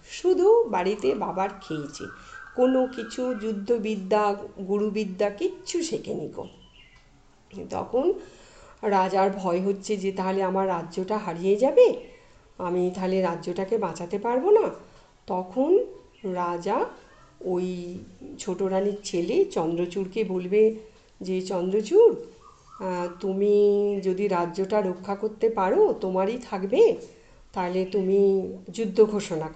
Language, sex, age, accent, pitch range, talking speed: Bengali, female, 50-69, native, 185-230 Hz, 100 wpm